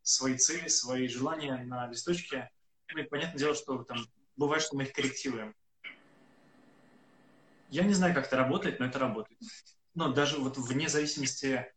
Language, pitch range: Russian, 125-145 Hz